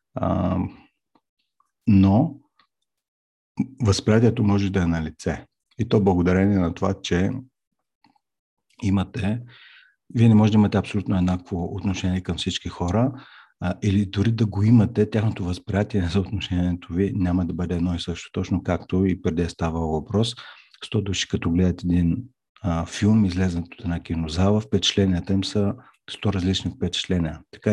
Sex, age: male, 50-69